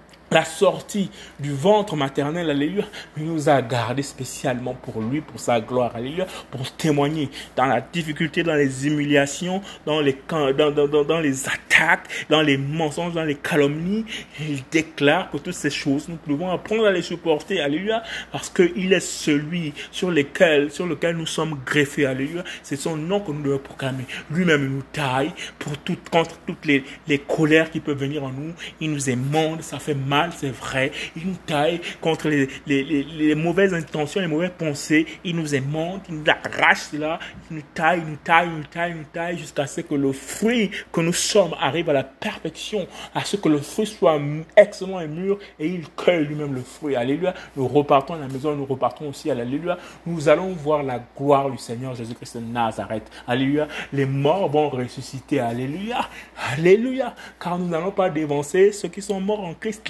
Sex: male